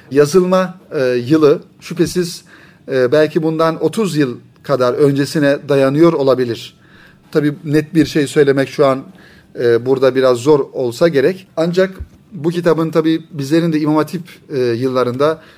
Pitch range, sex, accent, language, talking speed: 135-170 Hz, male, native, Turkish, 140 wpm